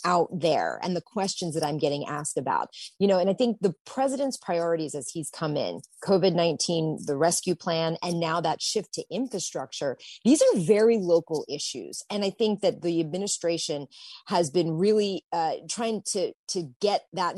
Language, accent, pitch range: English, American, 160-200 Hz